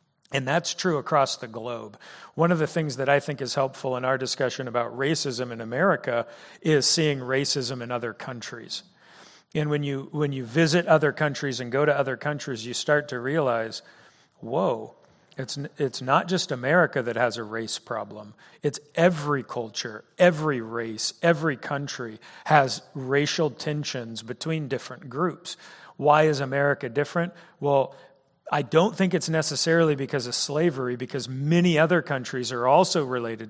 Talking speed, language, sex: 160 wpm, English, male